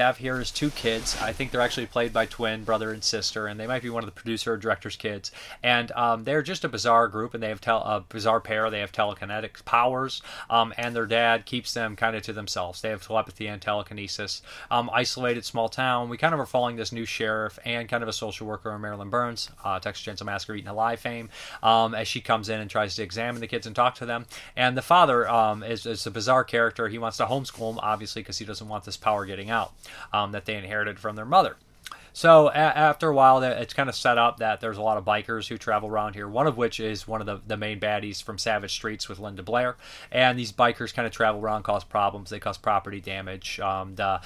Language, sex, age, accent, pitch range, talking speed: English, male, 30-49, American, 105-120 Hz, 245 wpm